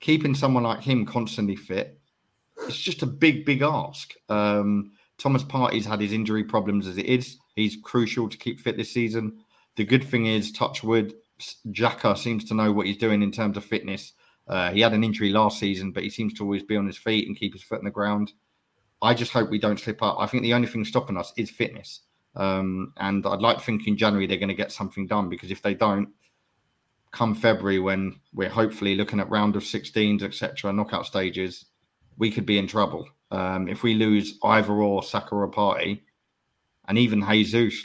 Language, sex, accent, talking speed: English, male, British, 210 wpm